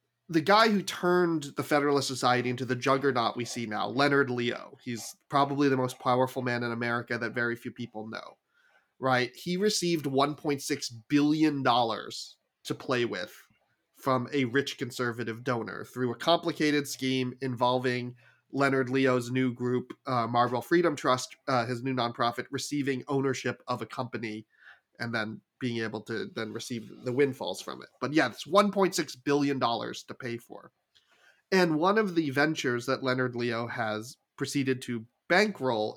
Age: 30-49